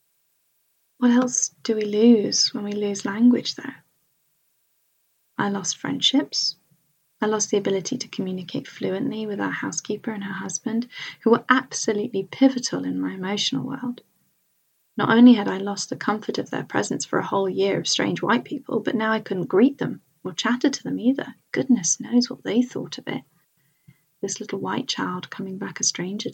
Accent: British